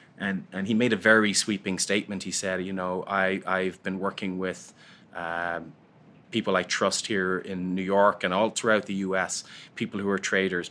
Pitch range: 90-100 Hz